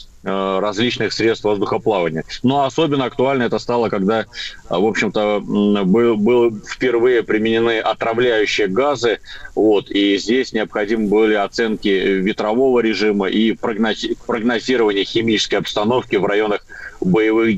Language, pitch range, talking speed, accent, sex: Russian, 105-125 Hz, 100 wpm, native, male